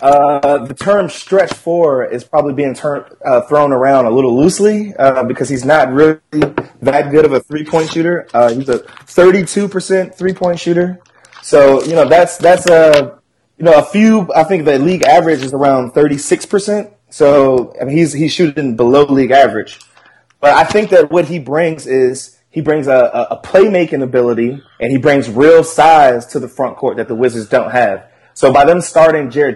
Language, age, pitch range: English, 20-39, 125-160 Hz